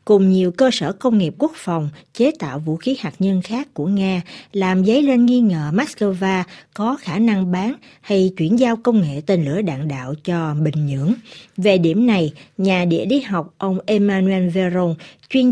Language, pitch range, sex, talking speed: Vietnamese, 165-220 Hz, female, 195 wpm